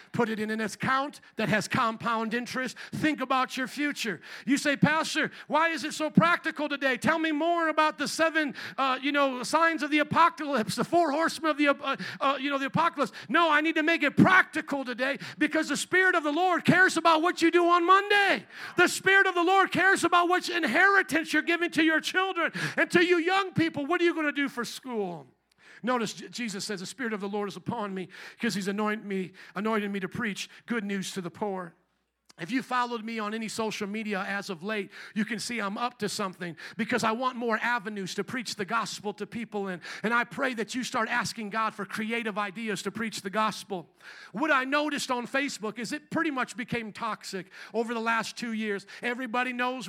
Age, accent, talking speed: 50-69, American, 220 wpm